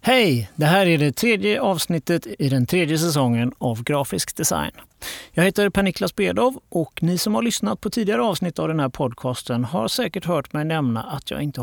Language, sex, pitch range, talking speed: Swedish, male, 135-190 Hz, 195 wpm